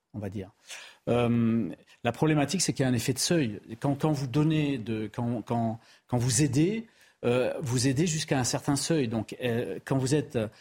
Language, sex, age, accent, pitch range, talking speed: French, male, 40-59, French, 120-155 Hz, 205 wpm